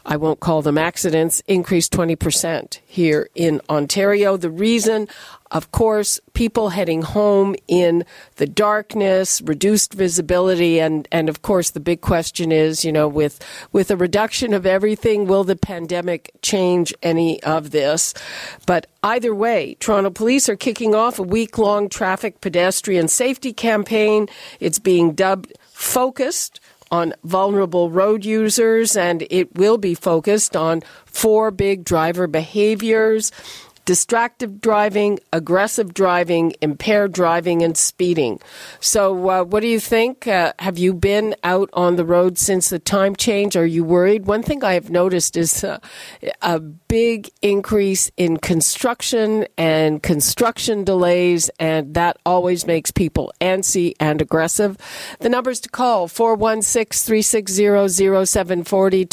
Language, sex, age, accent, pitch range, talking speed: English, female, 50-69, American, 170-215 Hz, 135 wpm